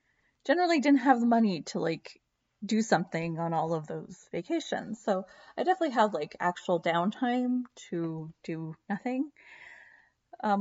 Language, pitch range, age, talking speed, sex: English, 175-235 Hz, 30-49, 140 wpm, female